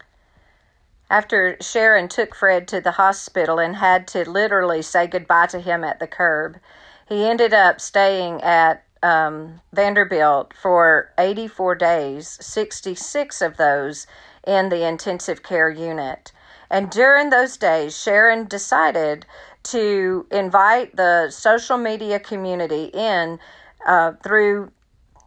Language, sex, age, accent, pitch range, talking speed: English, female, 40-59, American, 170-220 Hz, 120 wpm